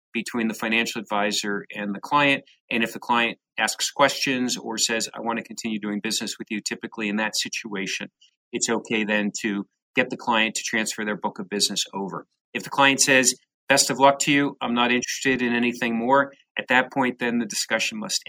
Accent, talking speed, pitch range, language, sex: American, 205 wpm, 110-130 Hz, English, male